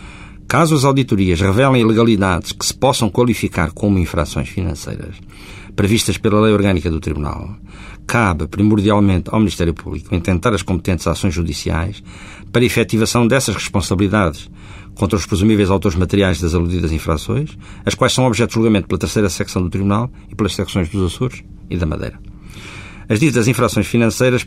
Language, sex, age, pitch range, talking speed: Portuguese, male, 50-69, 95-110 Hz, 155 wpm